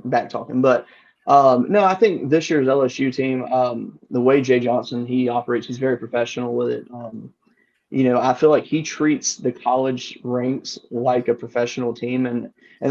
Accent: American